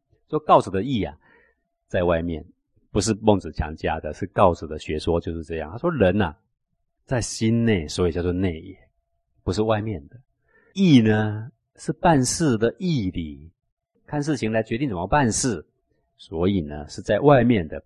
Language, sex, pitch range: Chinese, male, 80-110 Hz